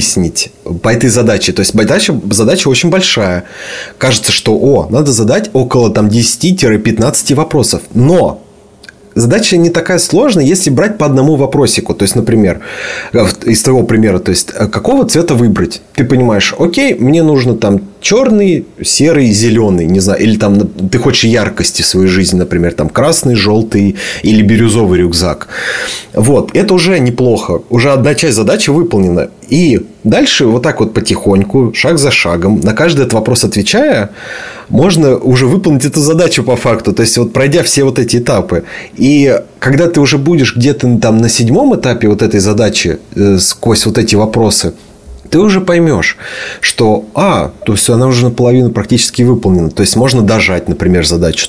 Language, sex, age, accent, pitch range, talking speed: Russian, male, 30-49, native, 100-135 Hz, 160 wpm